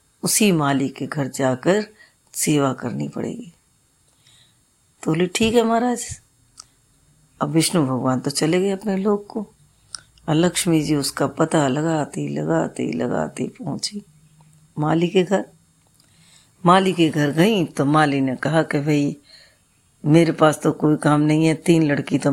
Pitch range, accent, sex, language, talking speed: 150-180 Hz, native, female, Hindi, 140 wpm